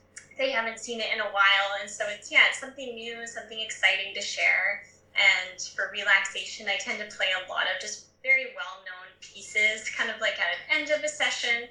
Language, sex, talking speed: English, female, 210 wpm